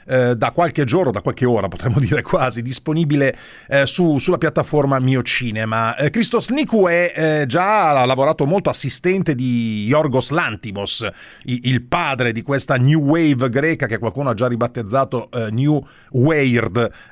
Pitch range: 125-170 Hz